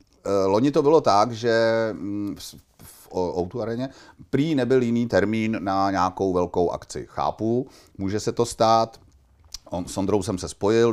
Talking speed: 135 wpm